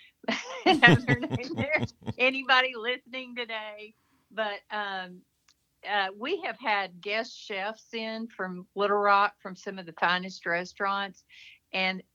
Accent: American